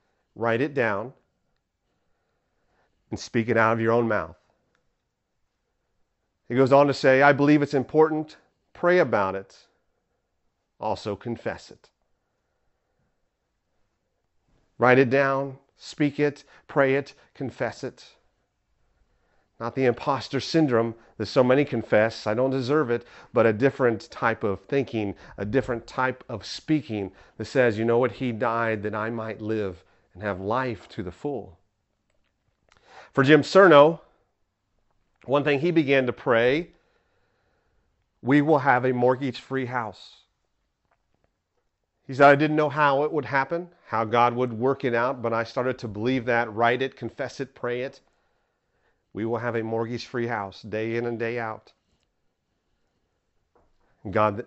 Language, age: English, 40-59